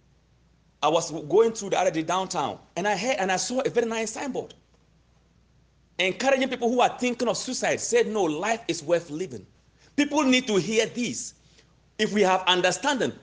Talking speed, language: 180 wpm, English